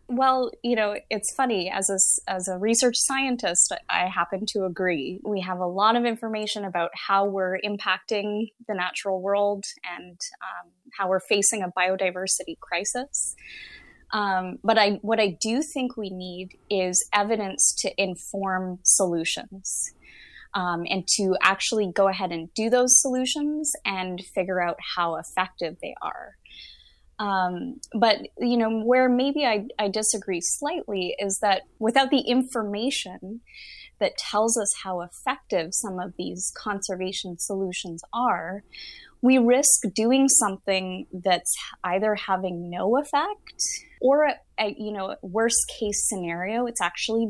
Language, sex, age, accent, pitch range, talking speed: English, female, 20-39, American, 185-240 Hz, 140 wpm